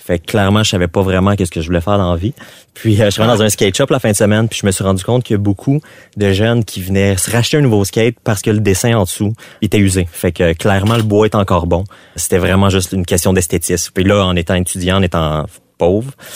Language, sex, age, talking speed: French, male, 30-49, 285 wpm